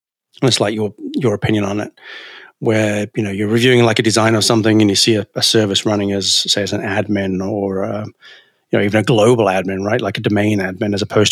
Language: English